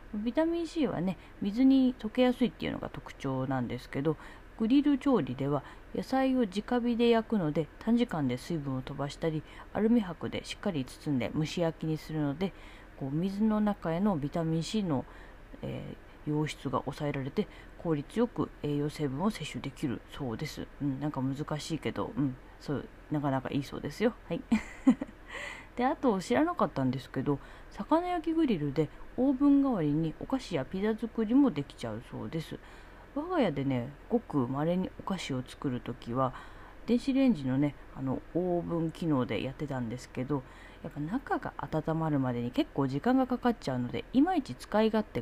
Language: Japanese